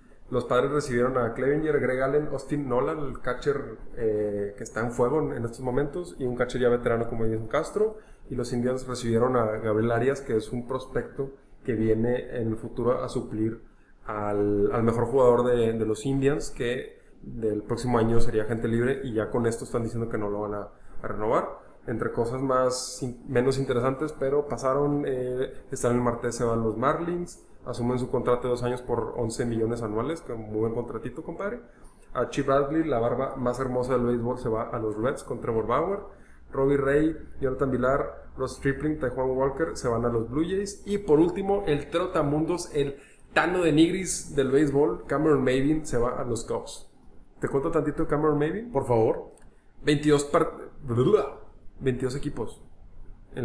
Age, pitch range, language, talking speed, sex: 20-39, 115-140 Hz, Spanish, 185 wpm, male